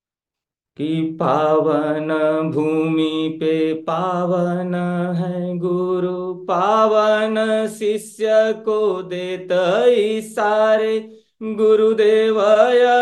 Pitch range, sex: 155-215 Hz, male